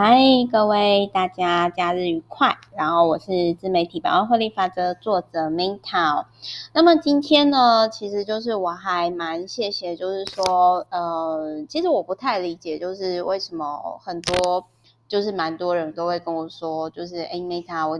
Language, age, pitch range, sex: Chinese, 20-39, 160-200 Hz, female